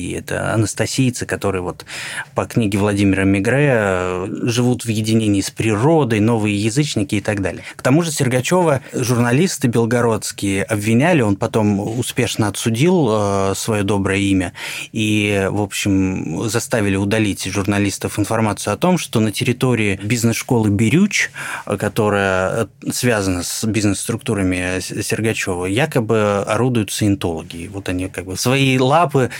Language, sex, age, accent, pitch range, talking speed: Russian, male, 20-39, native, 100-130 Hz, 120 wpm